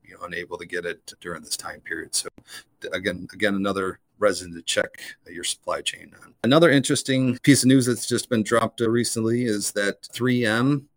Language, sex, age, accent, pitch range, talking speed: English, male, 40-59, American, 100-120 Hz, 185 wpm